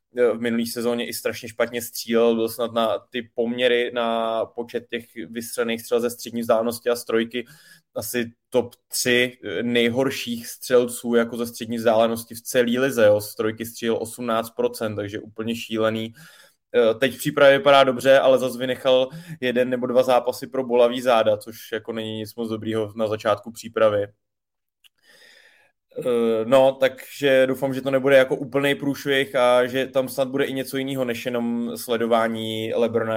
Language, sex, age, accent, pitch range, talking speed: Czech, male, 20-39, native, 115-125 Hz, 155 wpm